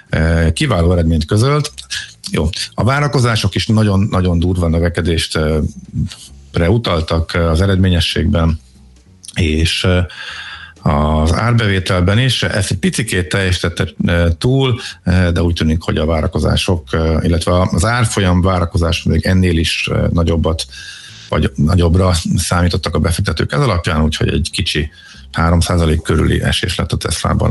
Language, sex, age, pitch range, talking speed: Hungarian, male, 50-69, 80-95 Hz, 115 wpm